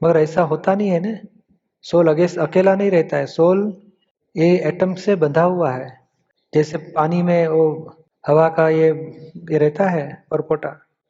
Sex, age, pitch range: male, 40-59, 160-190 Hz